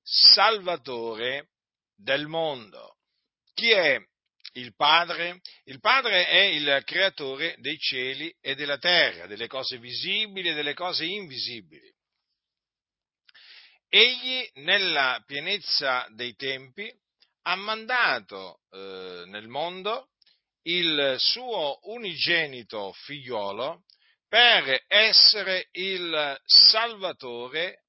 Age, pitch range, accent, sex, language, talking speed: 50-69, 135-190 Hz, native, male, Italian, 90 wpm